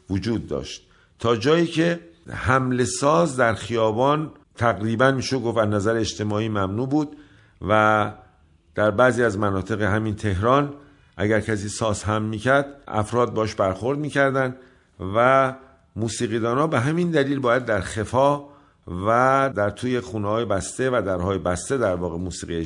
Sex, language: male, Persian